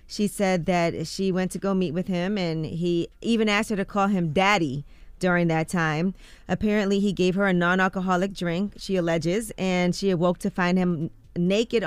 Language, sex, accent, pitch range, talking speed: English, female, American, 160-185 Hz, 190 wpm